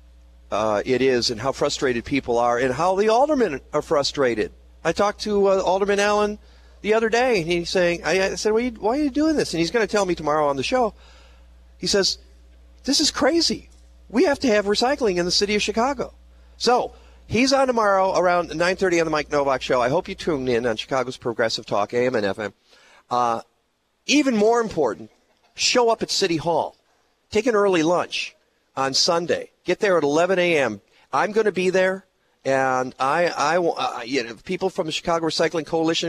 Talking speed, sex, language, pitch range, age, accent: 200 wpm, male, English, 125-190 Hz, 50-69, American